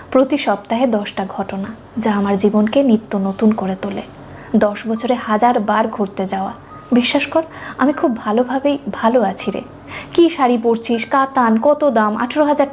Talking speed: 165 wpm